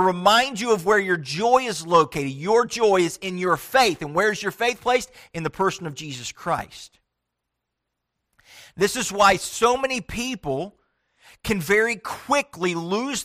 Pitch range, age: 175-225 Hz, 50-69